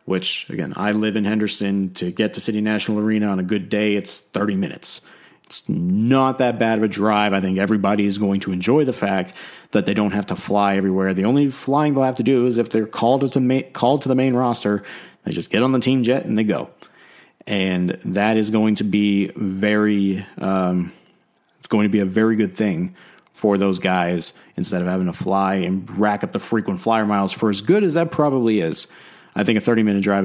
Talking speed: 220 wpm